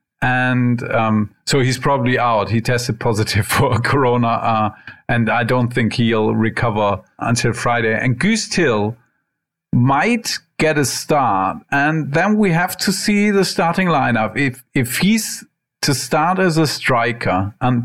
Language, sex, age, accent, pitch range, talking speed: English, male, 50-69, German, 120-160 Hz, 150 wpm